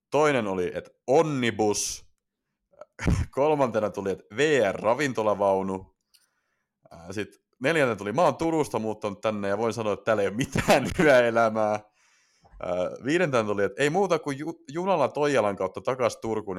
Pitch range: 105-155 Hz